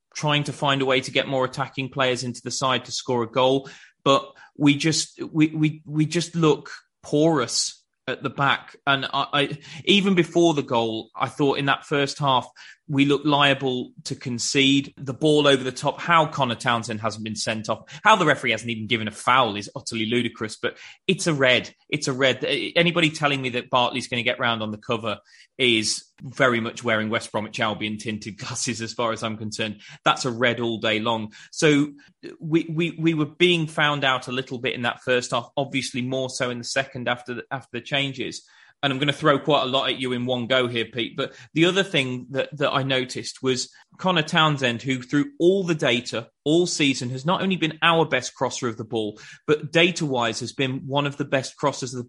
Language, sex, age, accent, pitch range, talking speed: English, male, 30-49, British, 120-150 Hz, 220 wpm